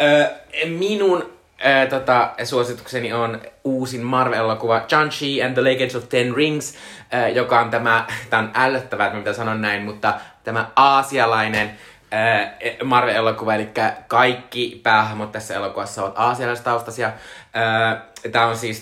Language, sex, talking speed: Finnish, male, 135 wpm